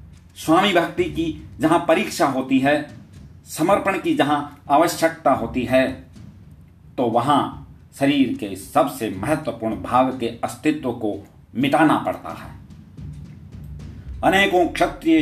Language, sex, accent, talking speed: Hindi, male, native, 110 wpm